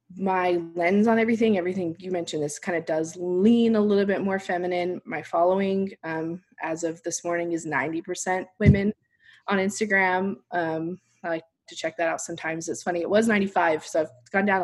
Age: 20-39